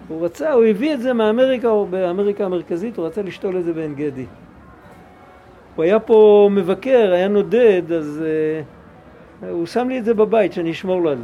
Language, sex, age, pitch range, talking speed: Hebrew, male, 50-69, 180-245 Hz, 185 wpm